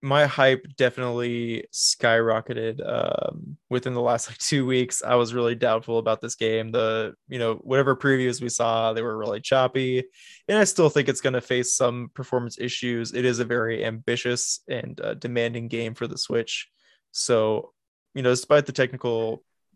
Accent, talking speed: American, 175 wpm